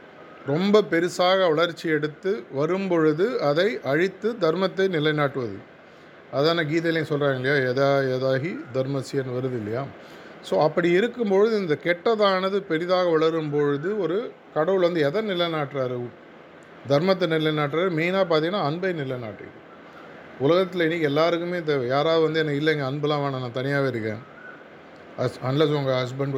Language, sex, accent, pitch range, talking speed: Tamil, male, native, 135-165 Hz, 115 wpm